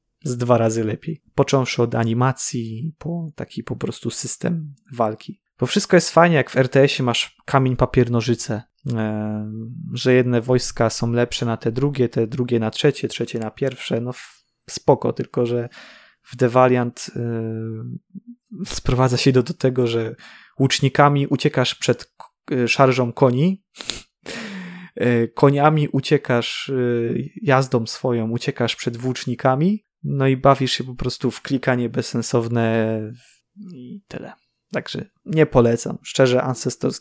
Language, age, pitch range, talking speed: Polish, 20-39, 120-160 Hz, 130 wpm